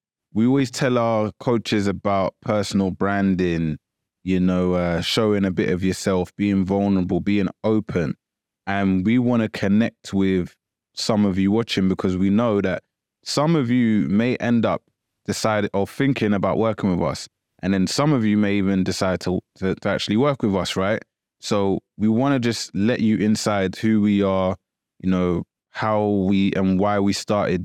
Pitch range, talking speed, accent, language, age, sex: 95-105 Hz, 180 wpm, British, English, 20-39, male